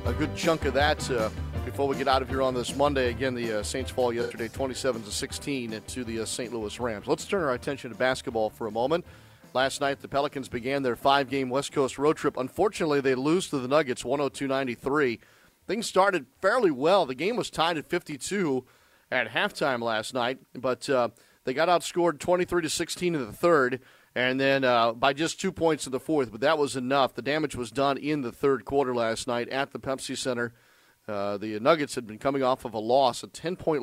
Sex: male